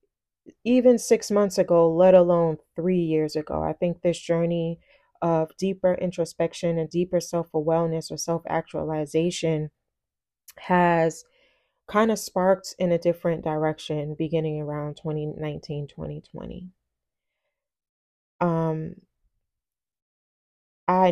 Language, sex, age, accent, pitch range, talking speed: English, female, 20-39, American, 155-180 Hz, 95 wpm